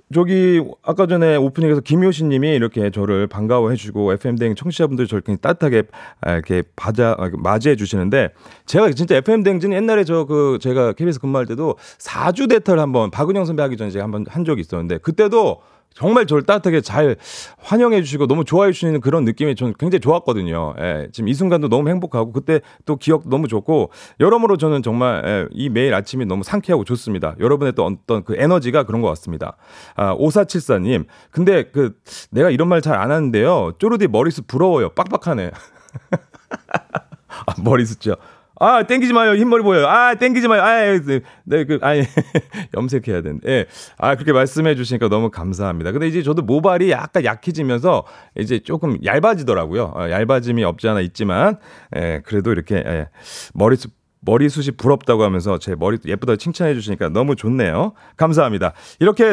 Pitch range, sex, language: 110-175 Hz, male, Korean